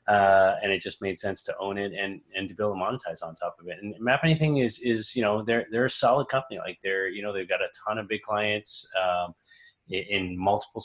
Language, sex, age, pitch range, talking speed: English, male, 20-39, 95-115 Hz, 255 wpm